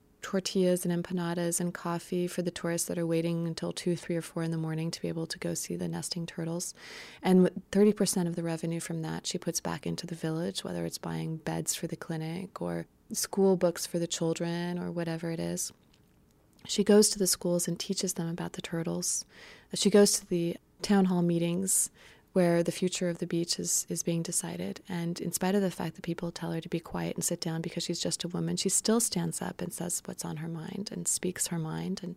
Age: 20-39